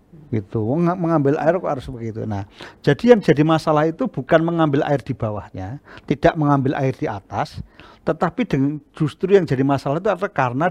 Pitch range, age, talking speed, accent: 135-200 Hz, 50-69, 170 wpm, native